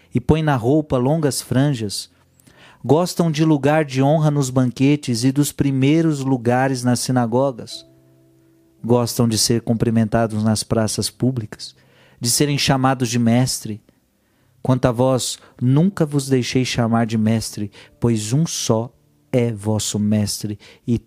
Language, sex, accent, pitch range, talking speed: Portuguese, male, Brazilian, 110-135 Hz, 135 wpm